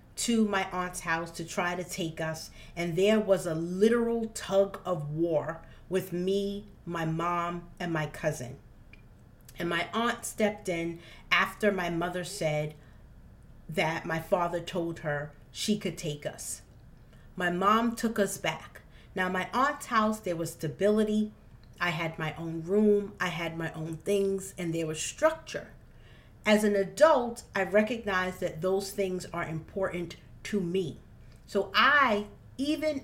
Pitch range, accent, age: 160-205 Hz, American, 40-59